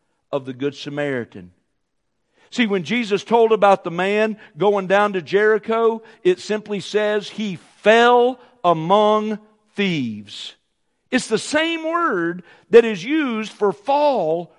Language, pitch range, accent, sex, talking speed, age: English, 195-305 Hz, American, male, 130 wpm, 50-69